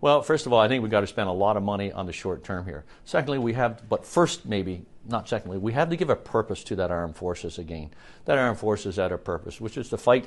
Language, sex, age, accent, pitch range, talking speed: English, male, 60-79, American, 95-120 Hz, 285 wpm